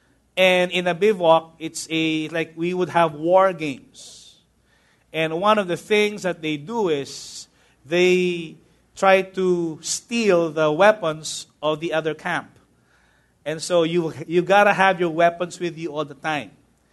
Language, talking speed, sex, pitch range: English, 160 wpm, male, 150-185 Hz